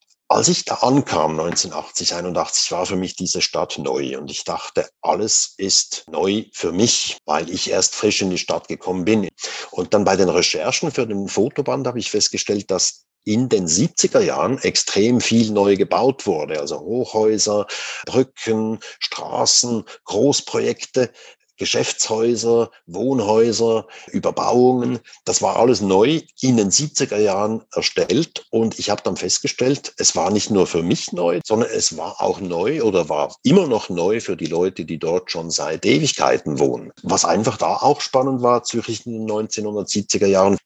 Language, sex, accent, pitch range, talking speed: German, male, German, 95-115 Hz, 155 wpm